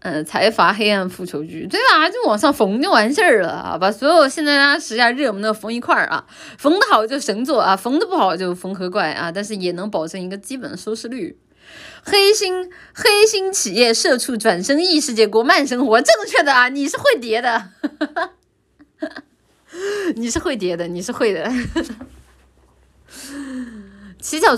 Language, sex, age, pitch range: Chinese, female, 20-39, 185-280 Hz